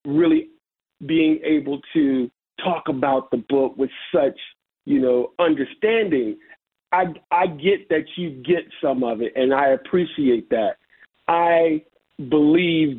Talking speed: 130 wpm